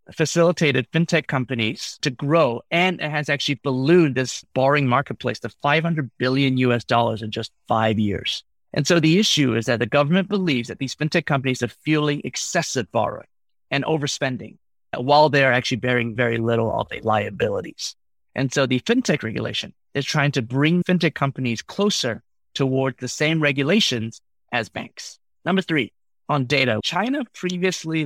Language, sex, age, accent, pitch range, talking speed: English, male, 30-49, American, 120-160 Hz, 160 wpm